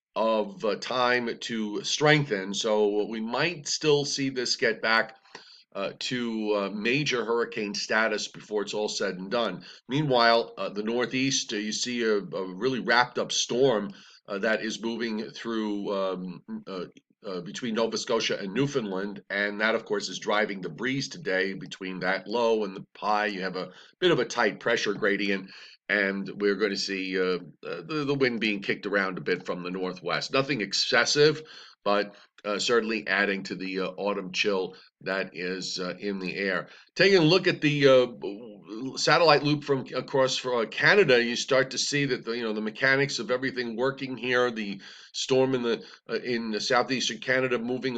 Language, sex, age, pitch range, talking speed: English, male, 40-59, 105-130 Hz, 180 wpm